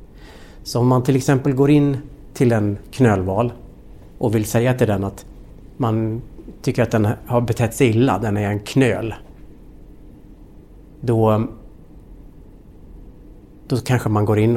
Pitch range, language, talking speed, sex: 105-130 Hz, Swedish, 140 wpm, male